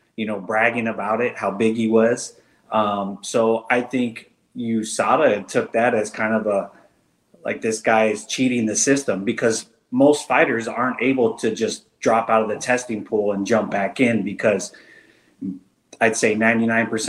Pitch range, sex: 105-115 Hz, male